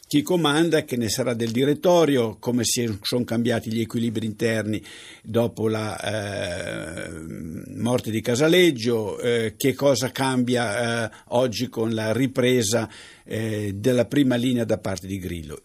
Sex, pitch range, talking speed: male, 110-160 Hz, 140 wpm